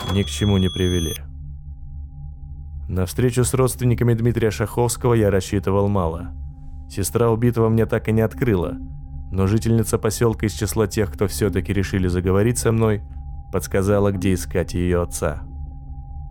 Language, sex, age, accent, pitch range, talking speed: Russian, male, 20-39, native, 70-105 Hz, 140 wpm